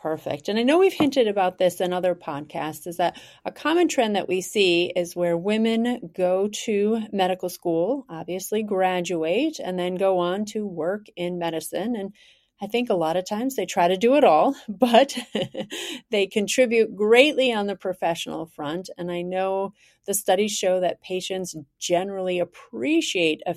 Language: English